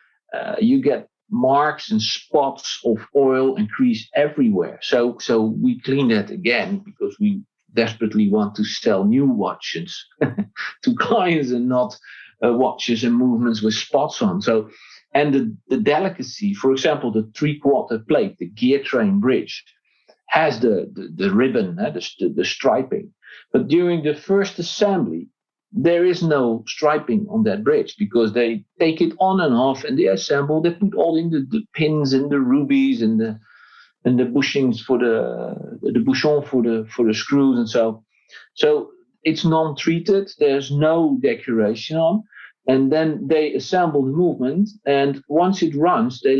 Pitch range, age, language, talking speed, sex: 125-200 Hz, 50-69, English, 165 wpm, male